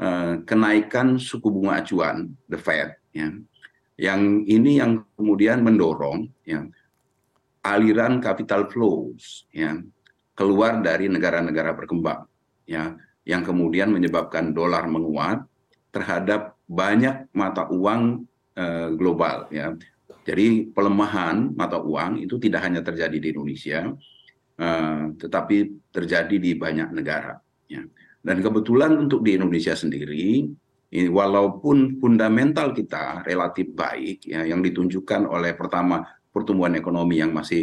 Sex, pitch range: male, 85-110 Hz